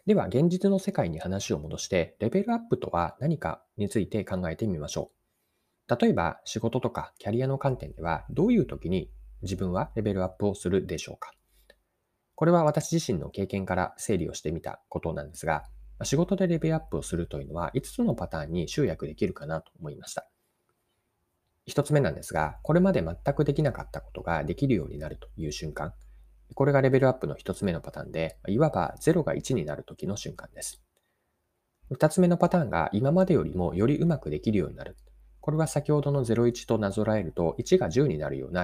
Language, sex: Japanese, male